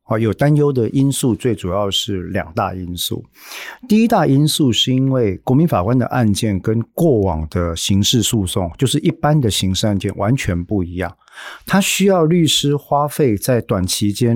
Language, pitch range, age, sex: Chinese, 100-130 Hz, 50-69, male